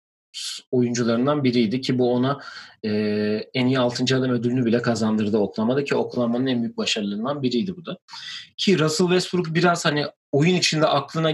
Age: 40-59